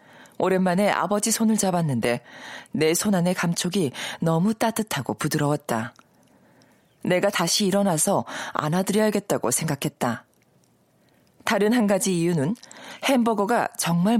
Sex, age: female, 40-59